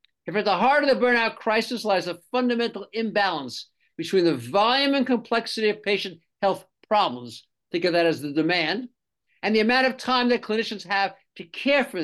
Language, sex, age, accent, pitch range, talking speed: English, male, 50-69, American, 175-240 Hz, 190 wpm